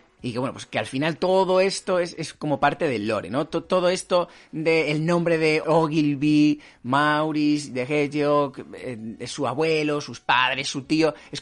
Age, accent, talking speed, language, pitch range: 30-49, Spanish, 180 wpm, Spanish, 135-180 Hz